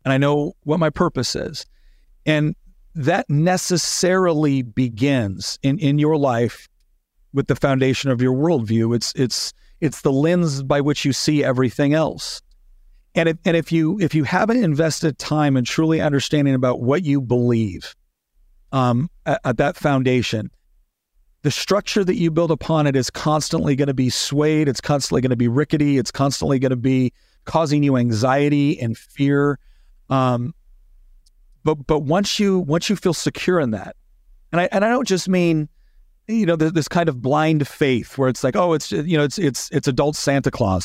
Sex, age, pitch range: male, 40-59, 130-170 Hz